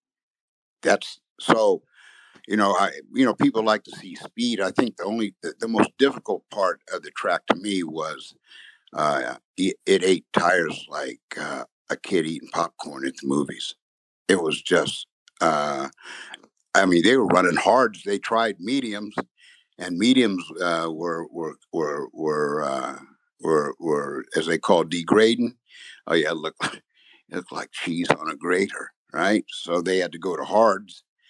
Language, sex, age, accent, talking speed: English, male, 60-79, American, 165 wpm